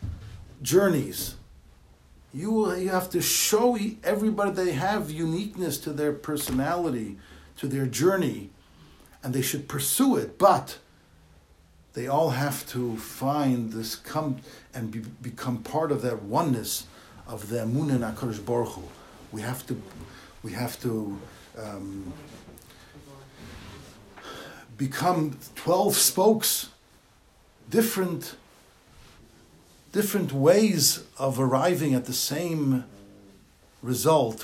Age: 60-79